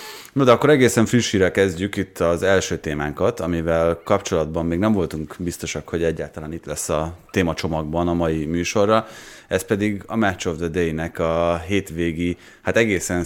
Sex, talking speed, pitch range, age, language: male, 165 wpm, 80-95 Hz, 30-49, Hungarian